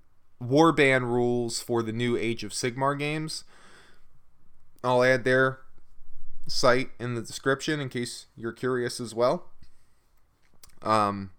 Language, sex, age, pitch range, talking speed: English, male, 20-39, 110-130 Hz, 125 wpm